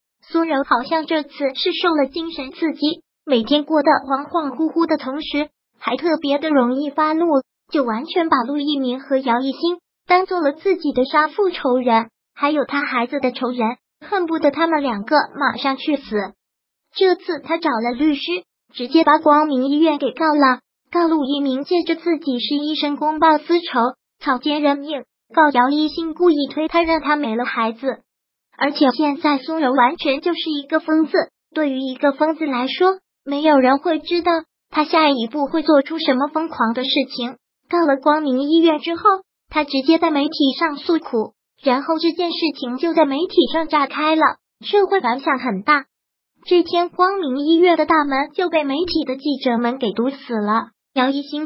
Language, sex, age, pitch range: Chinese, male, 20-39, 270-325 Hz